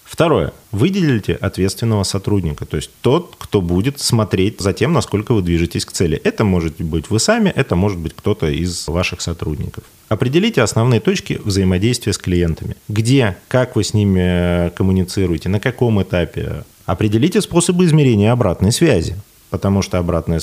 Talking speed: 155 wpm